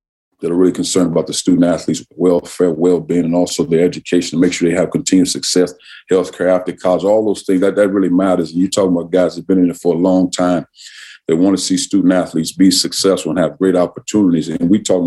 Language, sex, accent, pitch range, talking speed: English, male, American, 90-100 Hz, 235 wpm